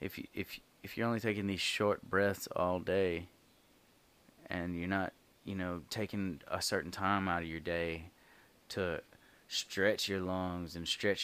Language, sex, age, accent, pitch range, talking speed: English, male, 20-39, American, 90-105 Hz, 165 wpm